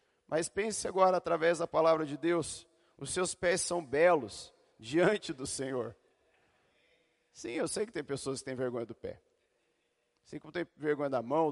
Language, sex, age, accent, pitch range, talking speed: Portuguese, male, 40-59, Brazilian, 125-165 Hz, 170 wpm